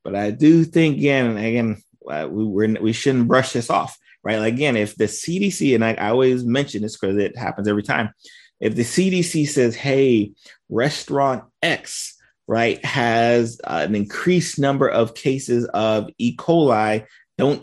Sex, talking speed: male, 165 wpm